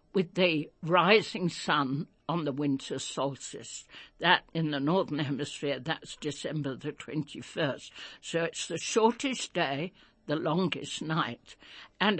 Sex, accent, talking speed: female, British, 130 wpm